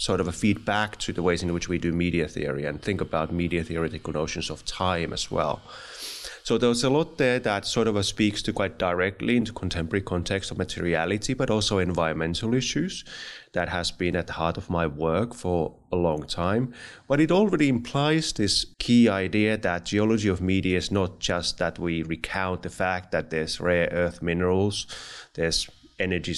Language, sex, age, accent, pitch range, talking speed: English, male, 30-49, Finnish, 85-110 Hz, 190 wpm